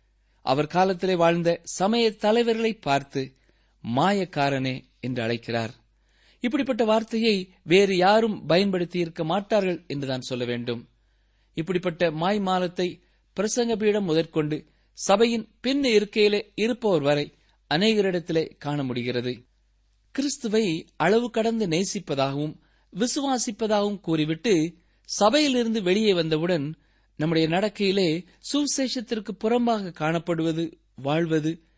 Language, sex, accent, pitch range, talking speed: Tamil, male, native, 150-220 Hz, 90 wpm